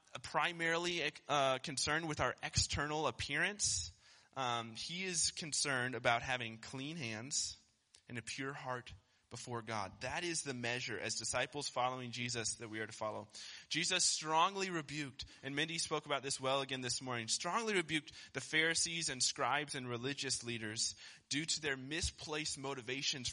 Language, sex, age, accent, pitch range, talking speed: English, male, 20-39, American, 120-155 Hz, 155 wpm